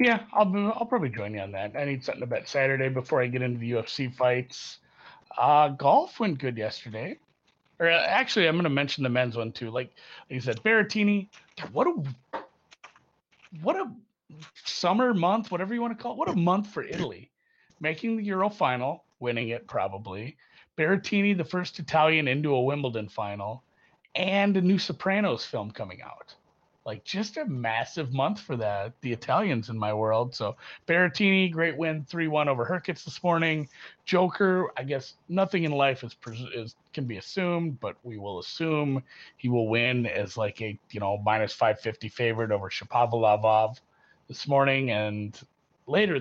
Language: English